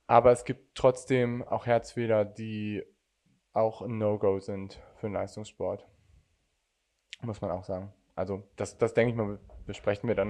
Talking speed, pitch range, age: 155 wpm, 105-130 Hz, 20-39